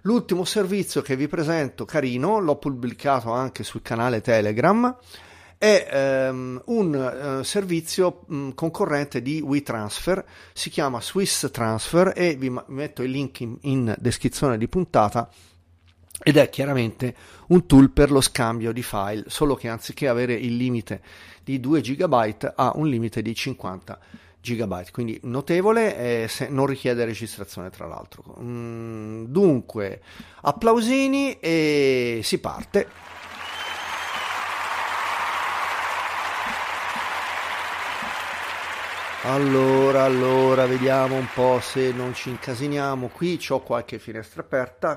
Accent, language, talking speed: native, Italian, 115 wpm